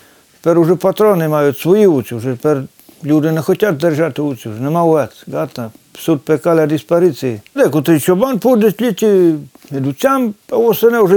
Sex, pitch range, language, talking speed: male, 140-205 Hz, Ukrainian, 165 wpm